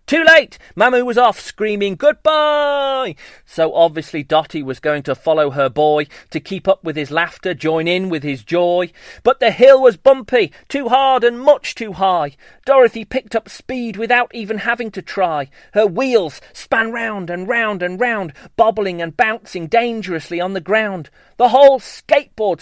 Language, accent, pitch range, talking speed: English, British, 165-235 Hz, 170 wpm